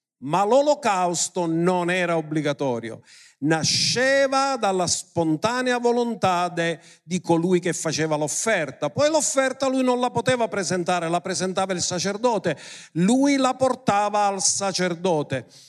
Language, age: Italian, 50-69